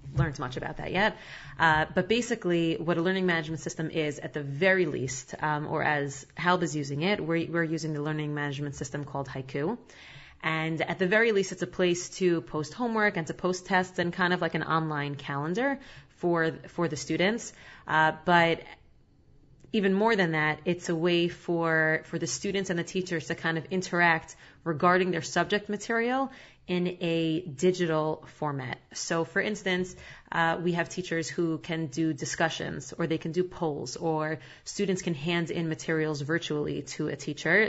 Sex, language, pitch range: female, English, 155-180 Hz